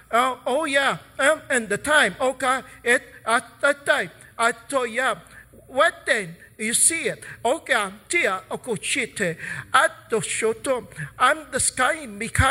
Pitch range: 235-290 Hz